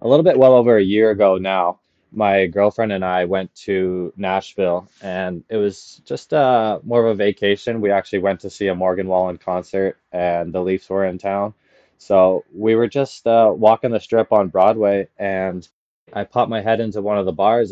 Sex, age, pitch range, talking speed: male, 20-39, 95-110 Hz, 205 wpm